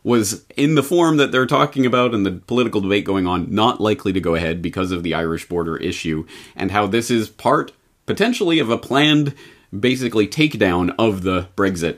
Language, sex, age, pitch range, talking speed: English, male, 30-49, 95-140 Hz, 195 wpm